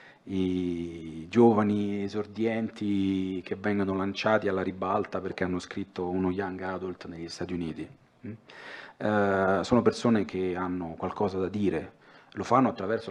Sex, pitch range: male, 95-115 Hz